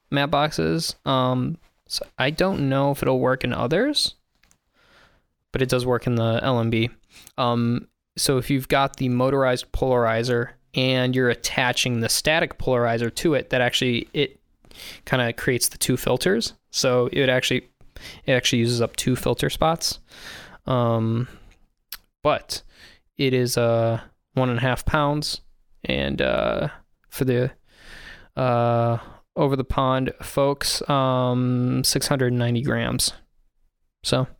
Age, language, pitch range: 20-39, English, 120-135 Hz